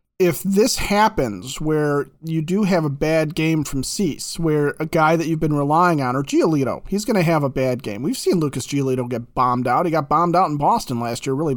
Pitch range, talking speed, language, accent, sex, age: 145-175 Hz, 235 wpm, English, American, male, 40-59